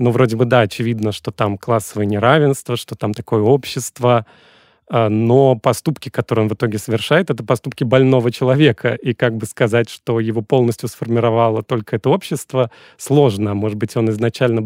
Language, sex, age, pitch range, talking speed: Russian, male, 30-49, 115-135 Hz, 165 wpm